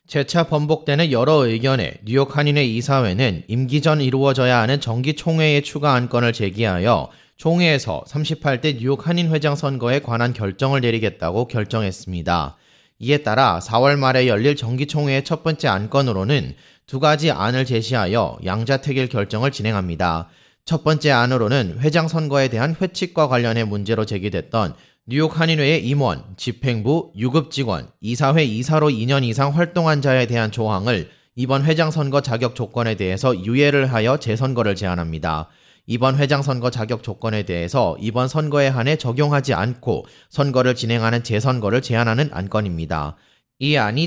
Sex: male